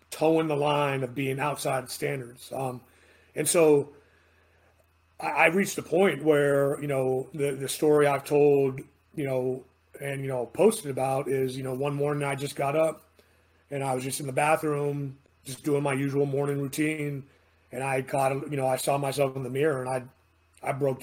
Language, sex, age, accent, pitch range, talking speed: English, male, 30-49, American, 130-150 Hz, 190 wpm